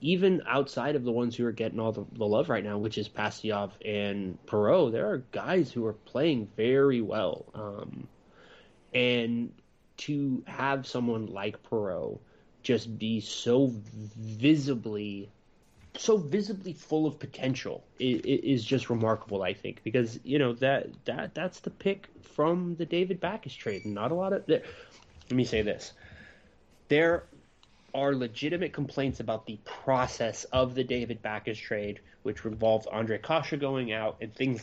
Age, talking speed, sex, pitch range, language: 20-39, 160 wpm, male, 110-145 Hz, English